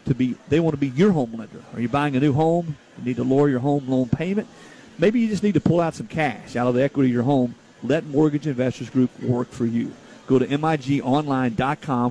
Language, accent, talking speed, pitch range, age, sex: English, American, 245 wpm, 125-155 Hz, 50-69, male